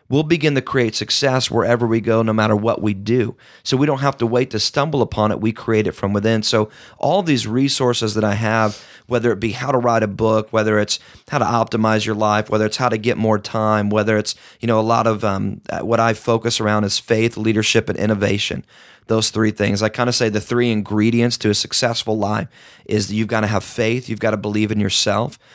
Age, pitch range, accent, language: 30-49, 105-120 Hz, American, English